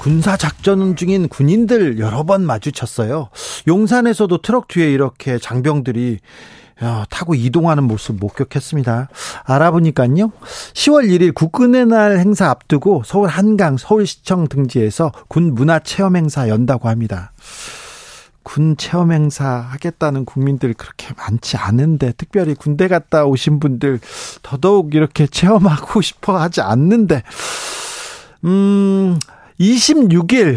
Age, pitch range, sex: 40-59, 135-185 Hz, male